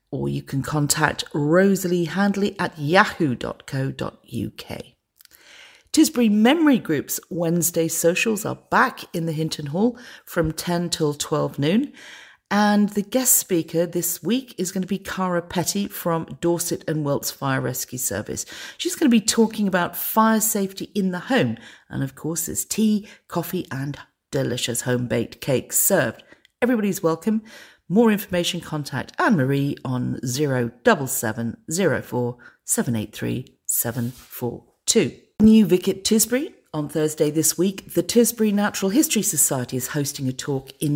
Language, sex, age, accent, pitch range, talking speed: English, female, 40-59, British, 145-205 Hz, 135 wpm